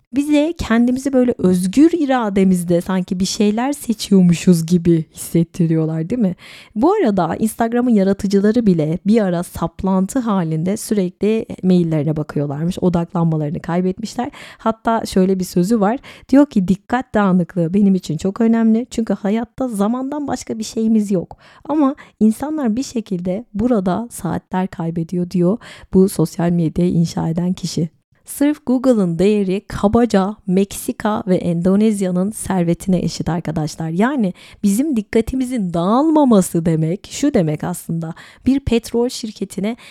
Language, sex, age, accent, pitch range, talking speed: Turkish, female, 30-49, native, 175-225 Hz, 125 wpm